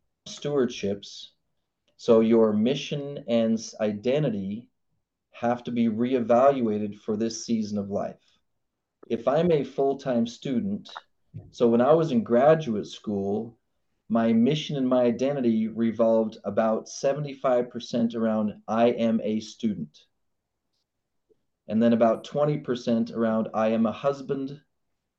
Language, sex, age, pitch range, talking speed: English, male, 30-49, 115-140 Hz, 120 wpm